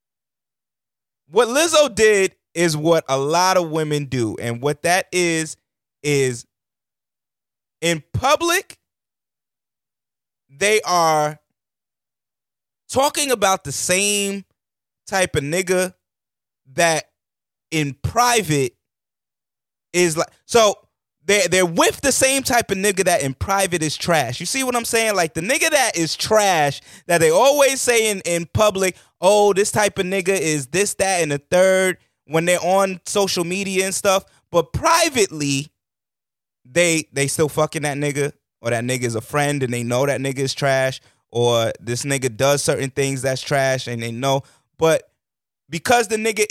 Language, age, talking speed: English, 20-39, 150 wpm